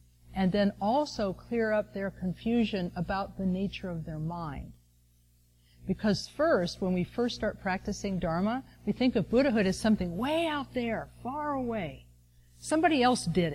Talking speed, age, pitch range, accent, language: 155 wpm, 50-69, 150-220 Hz, American, English